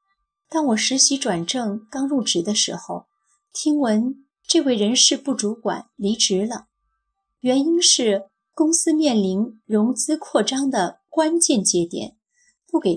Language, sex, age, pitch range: Chinese, female, 30-49, 195-265 Hz